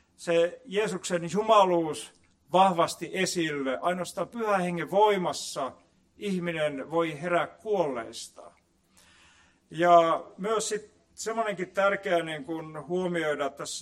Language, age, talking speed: Finnish, 50-69, 90 wpm